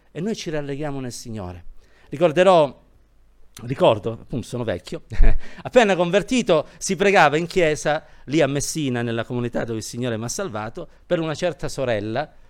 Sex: male